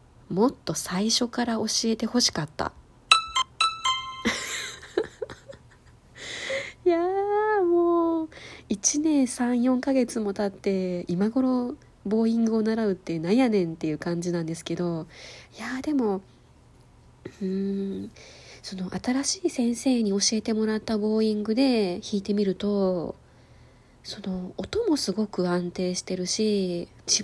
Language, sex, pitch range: Japanese, female, 175-235 Hz